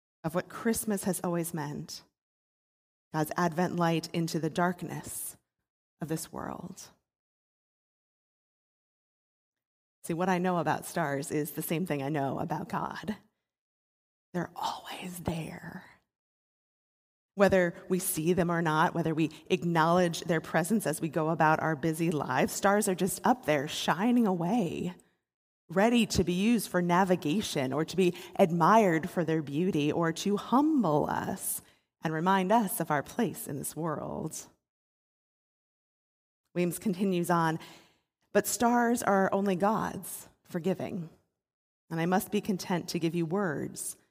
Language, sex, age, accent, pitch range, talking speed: English, female, 30-49, American, 160-195 Hz, 135 wpm